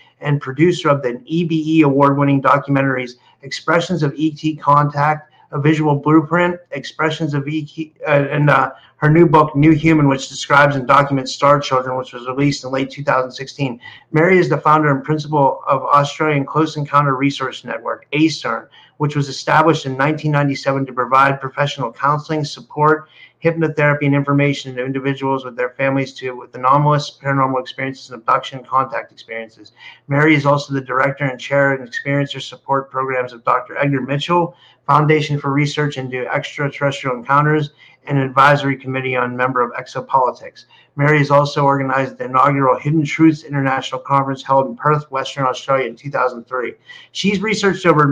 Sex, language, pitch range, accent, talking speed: male, English, 135-150 Hz, American, 155 wpm